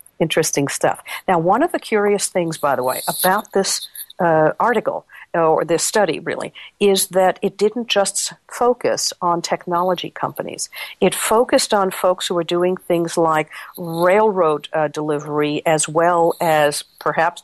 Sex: female